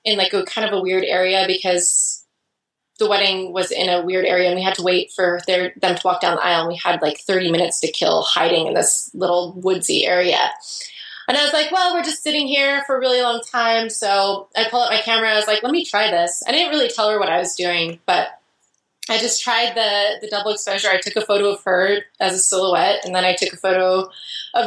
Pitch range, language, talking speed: 185-240 Hz, English, 250 wpm